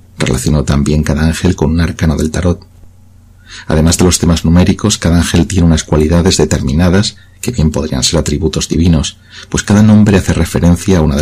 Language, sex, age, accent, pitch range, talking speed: Spanish, male, 40-59, Spanish, 80-95 Hz, 180 wpm